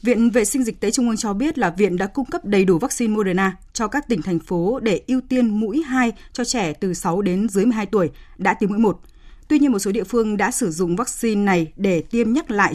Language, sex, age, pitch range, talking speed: Vietnamese, female, 20-39, 185-240 Hz, 260 wpm